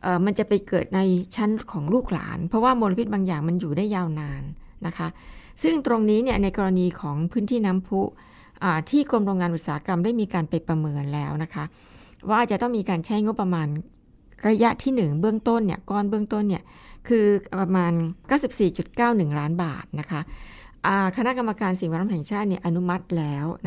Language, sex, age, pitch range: Thai, female, 60-79, 175-220 Hz